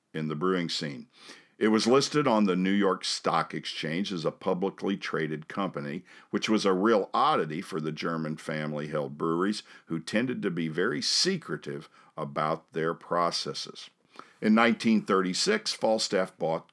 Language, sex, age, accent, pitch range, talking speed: English, male, 50-69, American, 80-110 Hz, 145 wpm